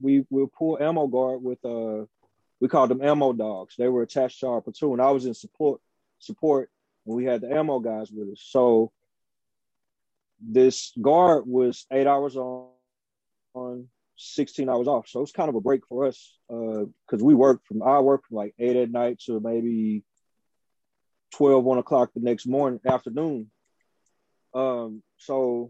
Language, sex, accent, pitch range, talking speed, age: English, male, American, 120-140 Hz, 175 wpm, 30-49